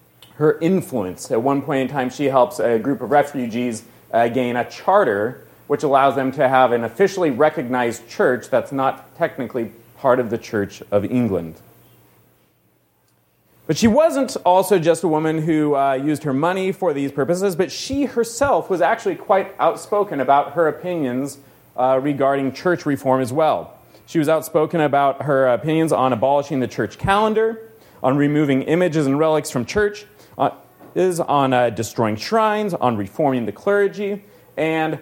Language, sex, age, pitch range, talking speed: English, male, 30-49, 130-175 Hz, 160 wpm